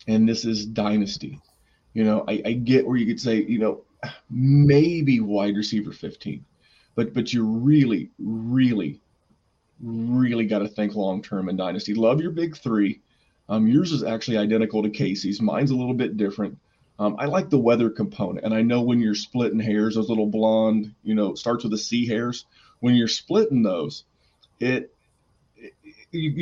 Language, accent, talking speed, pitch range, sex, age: English, American, 175 wpm, 105-120 Hz, male, 30-49